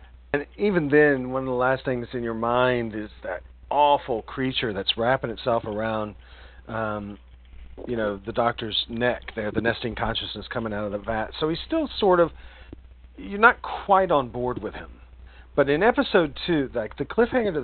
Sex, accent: male, American